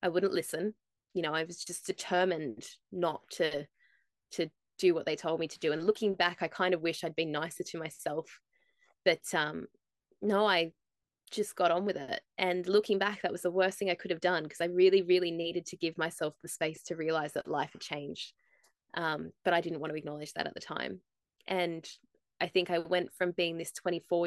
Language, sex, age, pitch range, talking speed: English, female, 20-39, 165-200 Hz, 220 wpm